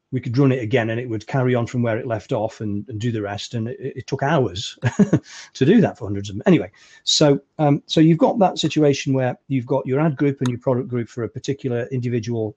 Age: 40-59